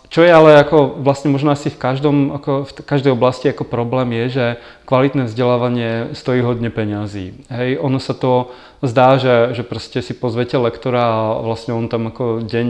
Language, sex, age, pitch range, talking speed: Czech, male, 20-39, 120-135 Hz, 170 wpm